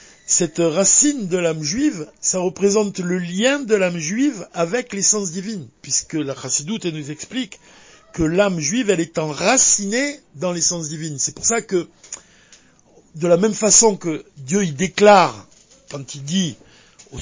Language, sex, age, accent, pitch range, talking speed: French, male, 50-69, French, 160-220 Hz, 155 wpm